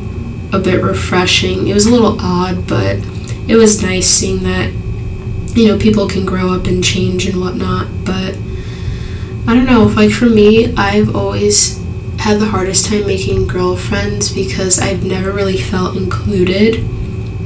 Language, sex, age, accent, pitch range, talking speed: English, female, 10-29, American, 95-110 Hz, 150 wpm